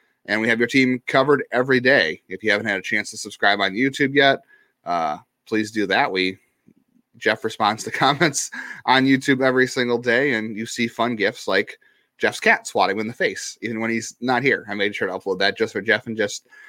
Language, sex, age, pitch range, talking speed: English, male, 30-49, 110-135 Hz, 220 wpm